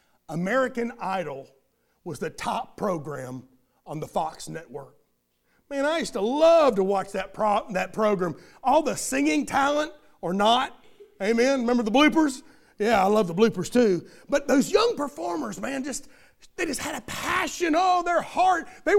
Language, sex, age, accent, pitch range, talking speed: English, male, 40-59, American, 215-330 Hz, 165 wpm